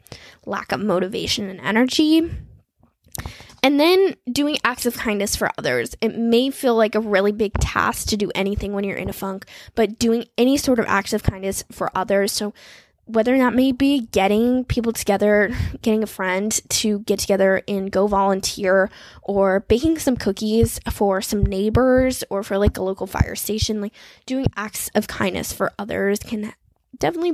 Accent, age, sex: American, 10-29, female